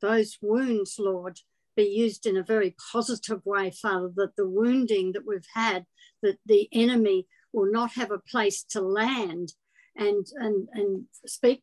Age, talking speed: 60-79, 160 wpm